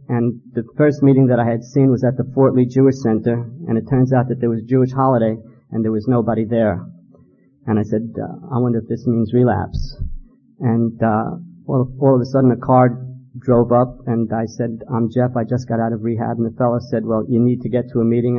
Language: English